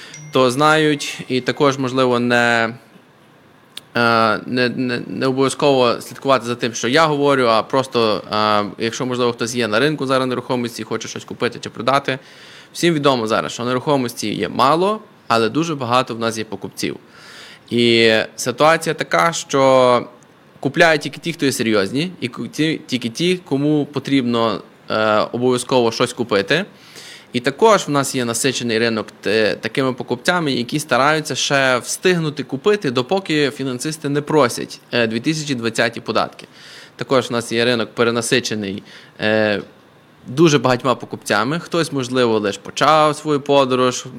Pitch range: 115-145 Hz